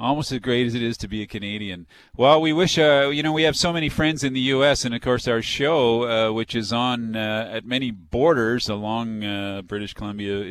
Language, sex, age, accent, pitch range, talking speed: English, male, 40-59, American, 100-125 Hz, 235 wpm